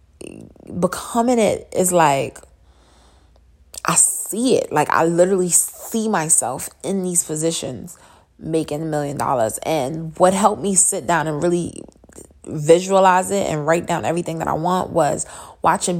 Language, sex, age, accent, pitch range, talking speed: English, female, 20-39, American, 150-185 Hz, 145 wpm